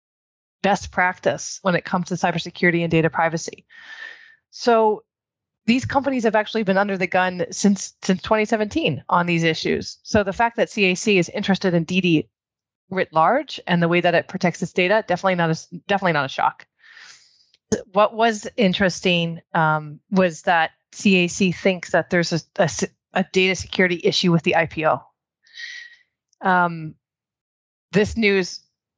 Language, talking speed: English, 150 wpm